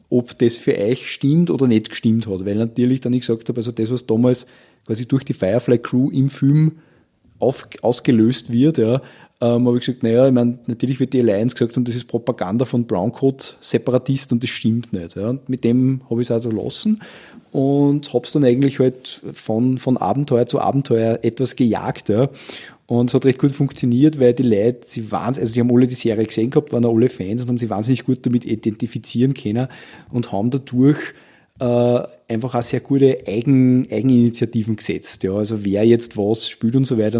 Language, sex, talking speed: German, male, 205 wpm